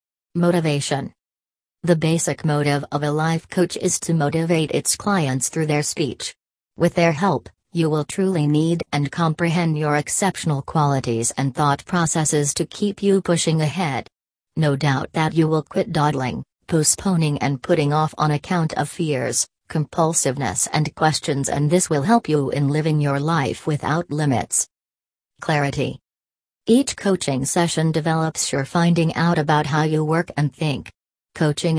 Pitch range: 145-170 Hz